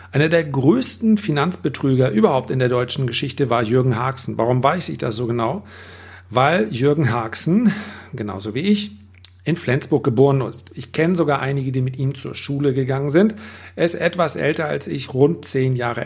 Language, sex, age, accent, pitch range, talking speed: German, male, 40-59, German, 125-160 Hz, 180 wpm